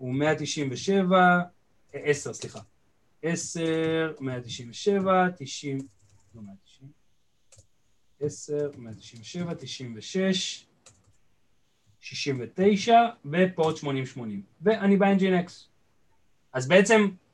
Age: 30-49